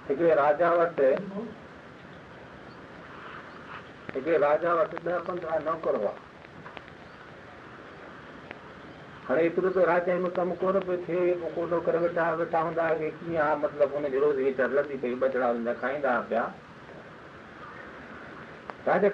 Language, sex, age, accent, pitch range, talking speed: Hindi, male, 50-69, native, 140-180 Hz, 120 wpm